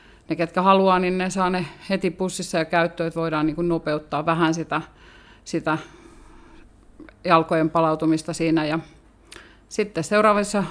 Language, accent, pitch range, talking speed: Finnish, native, 160-185 Hz, 140 wpm